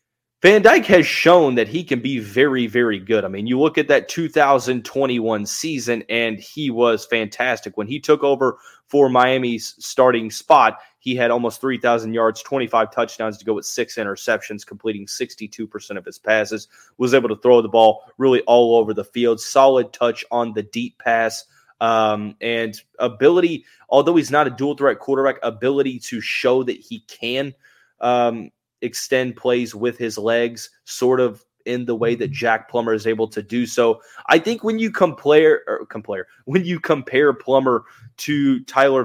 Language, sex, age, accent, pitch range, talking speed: English, male, 20-39, American, 115-135 Hz, 170 wpm